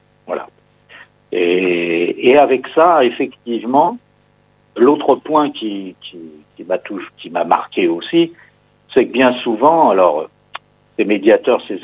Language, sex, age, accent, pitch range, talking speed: French, male, 60-79, French, 100-145 Hz, 125 wpm